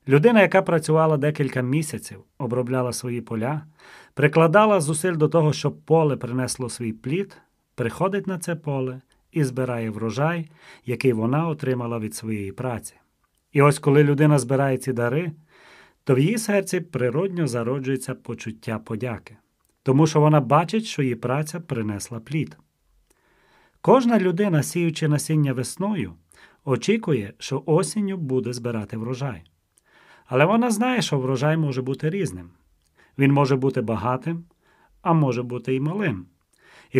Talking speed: 135 wpm